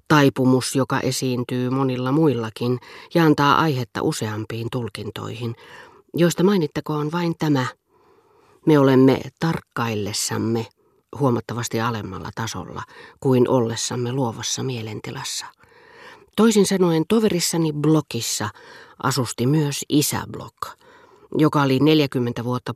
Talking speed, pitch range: 90 wpm, 120-150 Hz